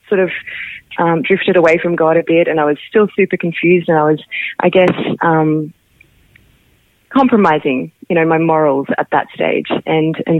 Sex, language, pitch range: female, English, 170-225 Hz